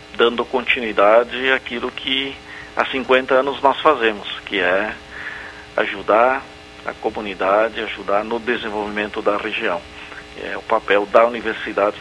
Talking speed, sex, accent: 120 wpm, male, Brazilian